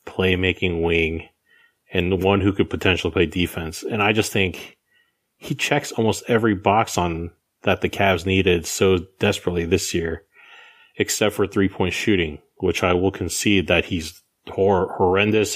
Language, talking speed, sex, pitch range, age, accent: English, 155 wpm, male, 90-110 Hz, 30-49, American